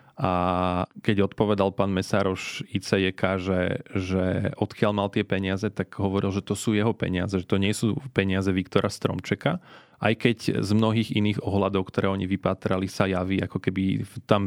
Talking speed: 165 wpm